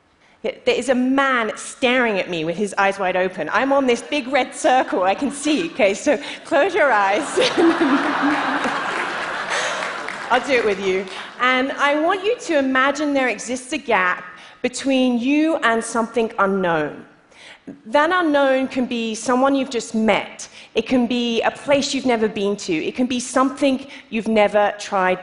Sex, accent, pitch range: female, British, 205-275 Hz